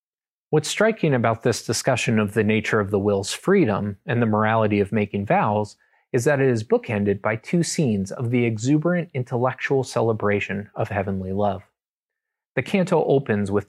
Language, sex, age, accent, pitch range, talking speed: English, male, 30-49, American, 105-130 Hz, 165 wpm